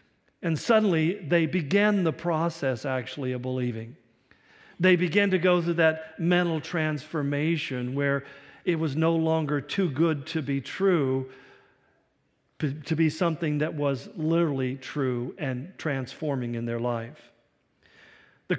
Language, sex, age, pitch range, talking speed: English, male, 50-69, 150-195 Hz, 130 wpm